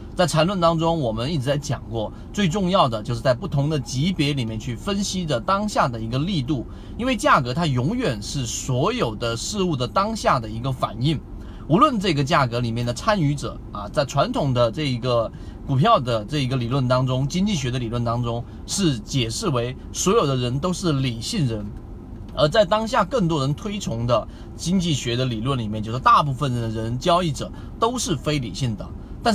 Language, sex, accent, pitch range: Chinese, male, native, 115-170 Hz